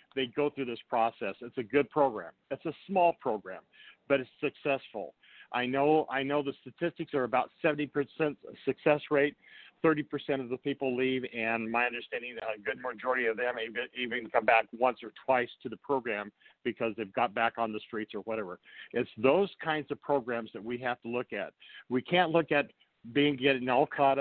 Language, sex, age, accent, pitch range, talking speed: English, male, 50-69, American, 115-140 Hz, 195 wpm